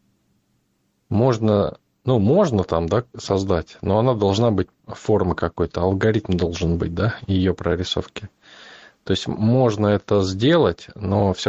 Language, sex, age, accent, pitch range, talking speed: Russian, male, 20-39, native, 90-110 Hz, 130 wpm